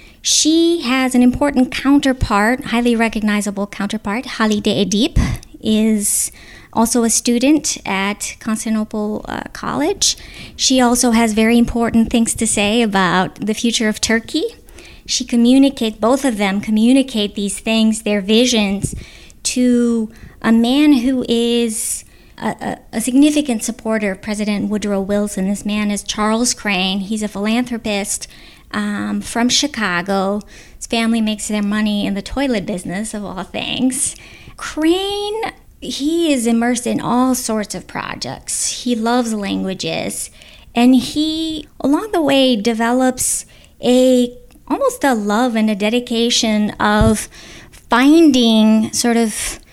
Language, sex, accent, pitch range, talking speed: English, female, American, 210-250 Hz, 125 wpm